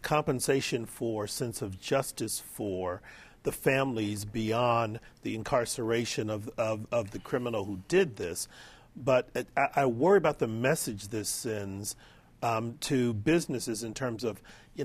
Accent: American